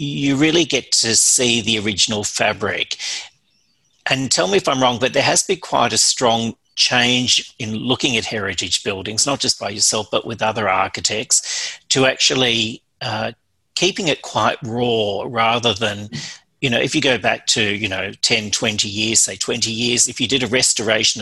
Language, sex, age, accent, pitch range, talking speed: English, male, 40-59, Australian, 110-130 Hz, 180 wpm